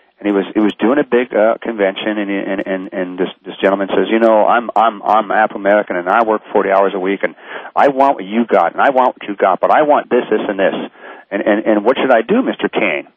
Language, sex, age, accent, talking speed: English, male, 40-59, American, 275 wpm